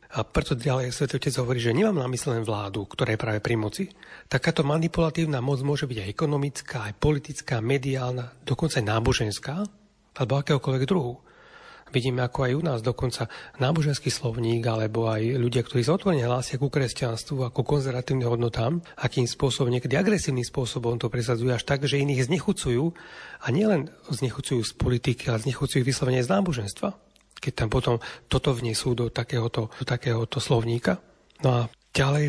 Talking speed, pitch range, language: 155 wpm, 120-140 Hz, Slovak